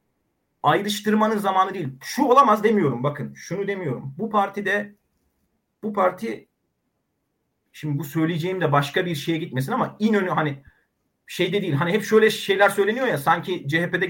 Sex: male